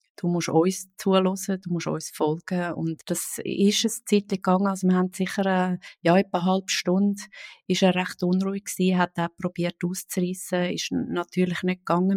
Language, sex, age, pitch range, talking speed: German, female, 30-49, 170-190 Hz, 180 wpm